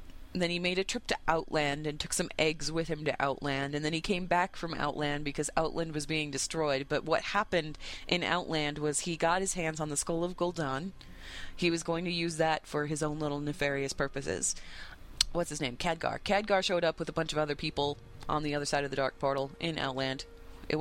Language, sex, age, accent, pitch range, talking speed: English, female, 30-49, American, 145-180 Hz, 230 wpm